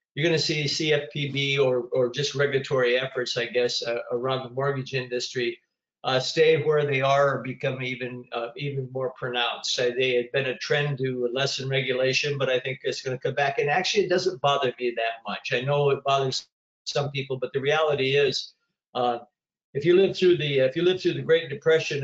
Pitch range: 130-150 Hz